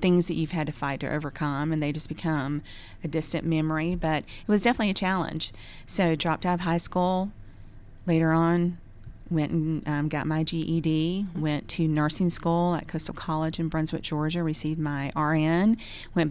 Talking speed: 180 wpm